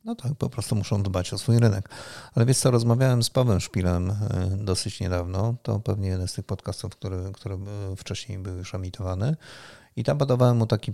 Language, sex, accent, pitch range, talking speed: Polish, male, native, 95-115 Hz, 190 wpm